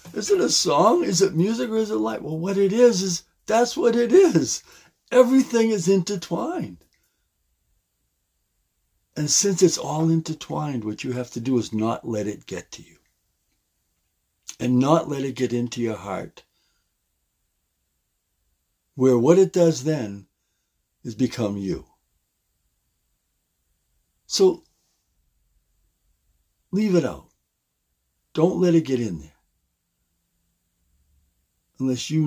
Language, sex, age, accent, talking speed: English, male, 60-79, American, 125 wpm